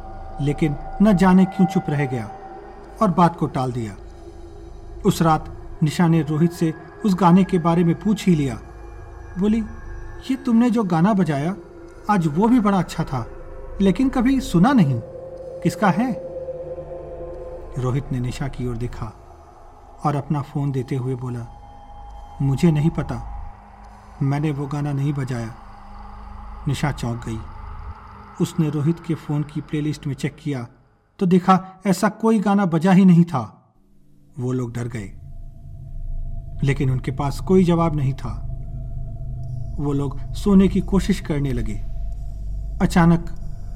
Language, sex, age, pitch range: Hindi, male, 40-59, 120-180 Hz